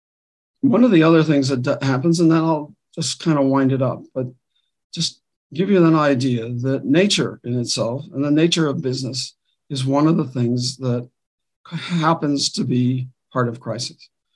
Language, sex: English, male